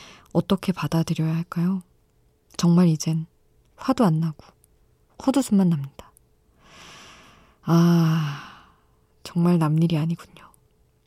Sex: female